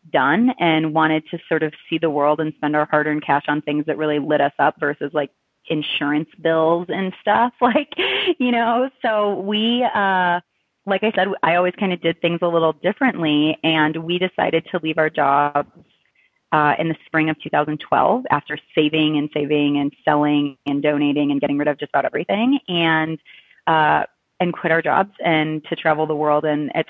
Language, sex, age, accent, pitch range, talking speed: English, female, 30-49, American, 150-175 Hz, 190 wpm